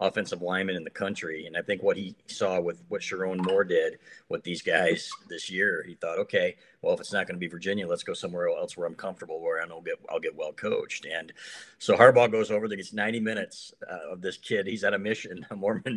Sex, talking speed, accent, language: male, 250 wpm, American, English